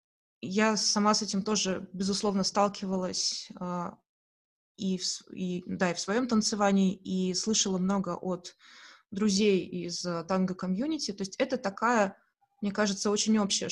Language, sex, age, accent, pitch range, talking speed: Russian, female, 20-39, native, 185-215 Hz, 140 wpm